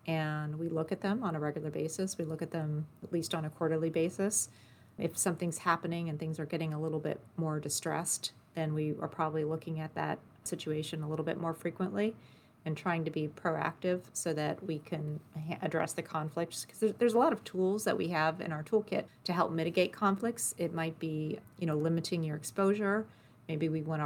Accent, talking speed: American, 210 wpm